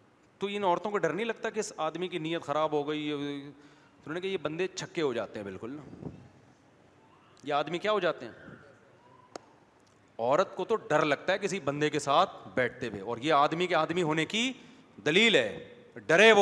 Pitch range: 145-210 Hz